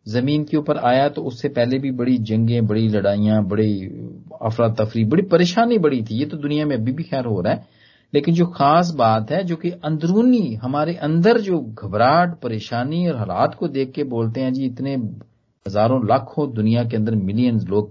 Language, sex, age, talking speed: Hindi, male, 40-59, 195 wpm